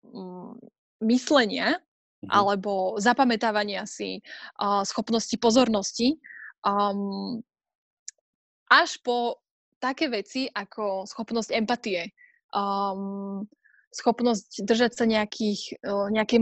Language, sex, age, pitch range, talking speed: Slovak, female, 20-39, 210-250 Hz, 65 wpm